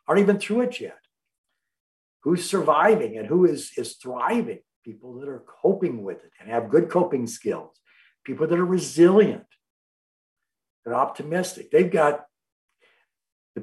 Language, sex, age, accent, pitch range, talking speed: English, male, 60-79, American, 150-230 Hz, 140 wpm